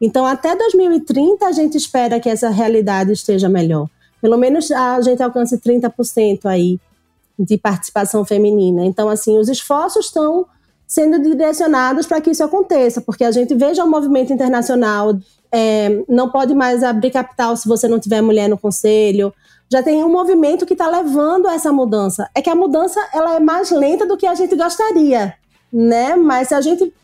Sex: female